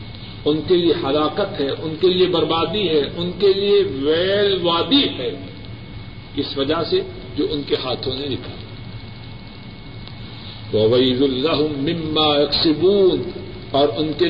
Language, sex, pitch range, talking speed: Urdu, male, 110-160 Hz, 120 wpm